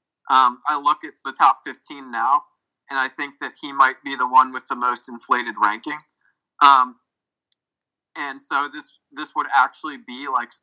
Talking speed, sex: 175 wpm, male